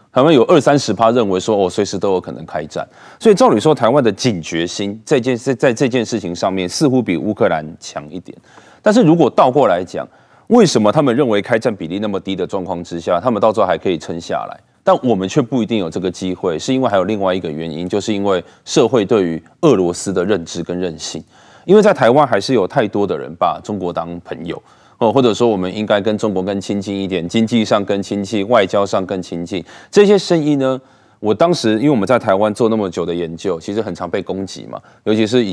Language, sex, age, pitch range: Chinese, male, 20-39, 90-125 Hz